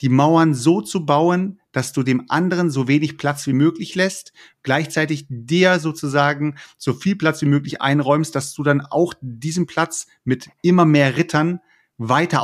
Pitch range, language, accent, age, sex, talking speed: 135-165 Hz, German, German, 30-49, male, 170 wpm